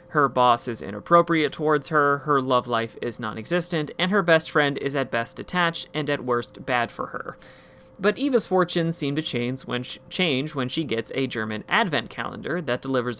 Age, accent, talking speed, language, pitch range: 30-49, American, 180 wpm, English, 120-165 Hz